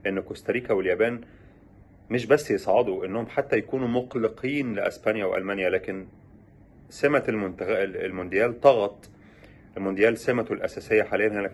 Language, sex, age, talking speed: Arabic, male, 30-49, 110 wpm